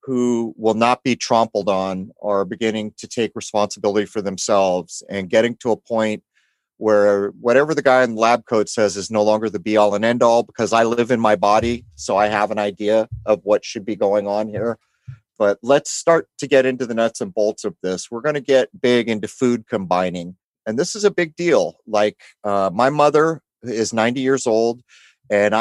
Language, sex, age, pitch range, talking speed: English, male, 40-59, 105-130 Hz, 210 wpm